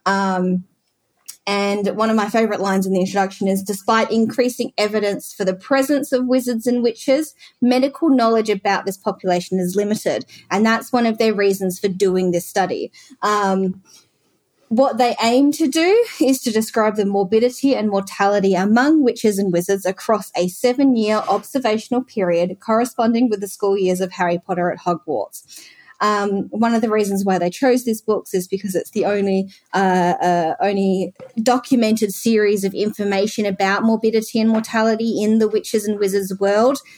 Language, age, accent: English, 20-39, Australian